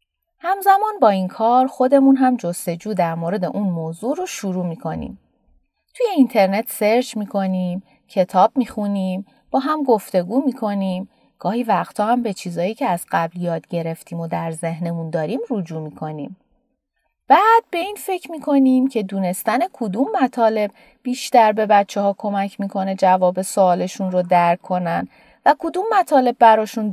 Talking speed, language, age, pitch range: 145 wpm, Persian, 30-49, 180-265 Hz